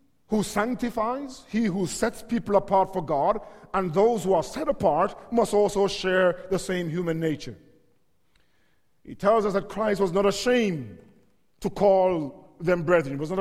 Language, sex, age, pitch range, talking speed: English, male, 50-69, 190-230 Hz, 165 wpm